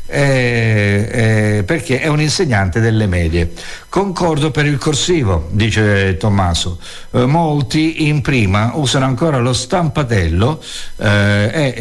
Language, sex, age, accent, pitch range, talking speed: Italian, male, 60-79, native, 115-155 Hz, 120 wpm